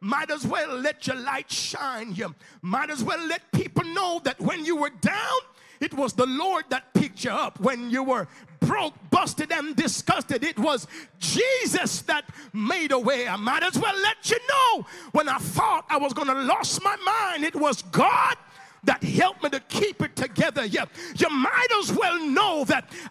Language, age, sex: English, 50-69, male